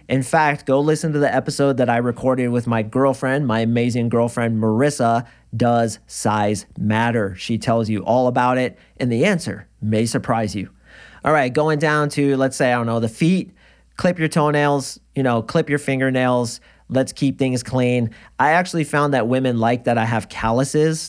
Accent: American